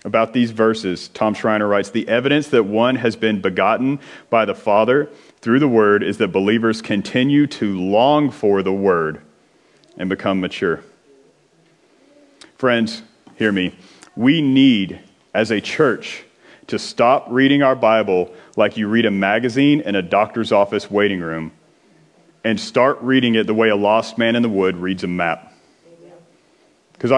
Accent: American